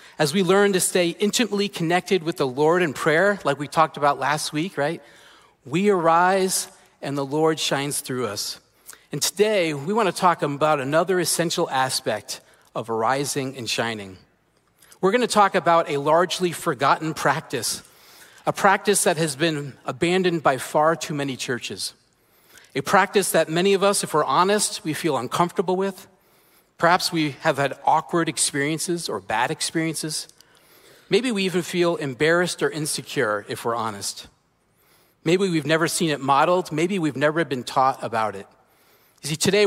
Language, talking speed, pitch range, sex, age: English, 165 wpm, 145-185 Hz, male, 40-59